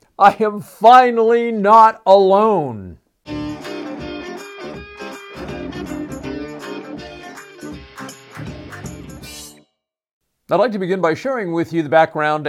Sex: male